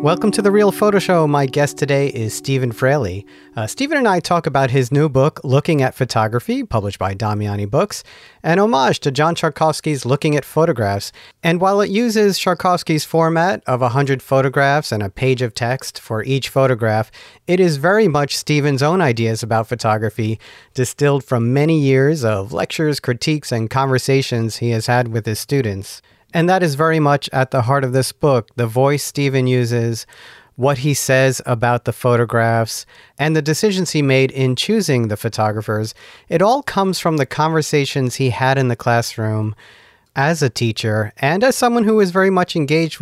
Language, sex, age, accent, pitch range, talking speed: English, male, 40-59, American, 120-155 Hz, 180 wpm